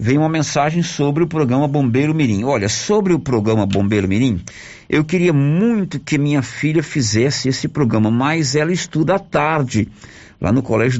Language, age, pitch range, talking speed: Portuguese, 50-69, 115-155 Hz, 170 wpm